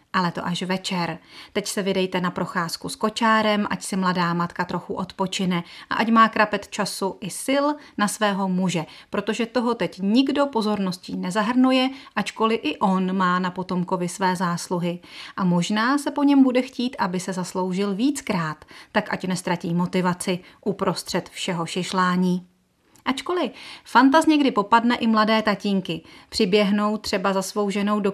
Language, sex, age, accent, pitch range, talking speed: Czech, female, 30-49, native, 185-230 Hz, 155 wpm